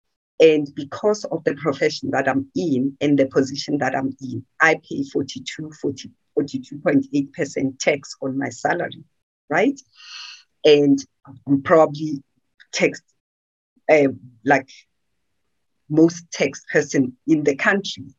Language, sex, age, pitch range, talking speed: English, female, 50-69, 135-175 Hz, 120 wpm